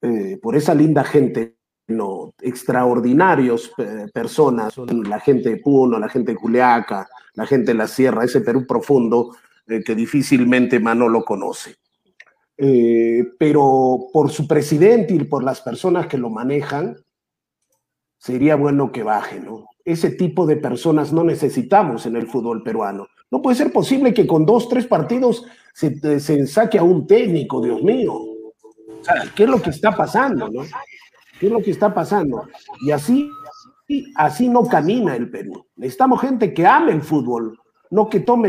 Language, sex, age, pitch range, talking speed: Spanish, male, 50-69, 130-215 Hz, 160 wpm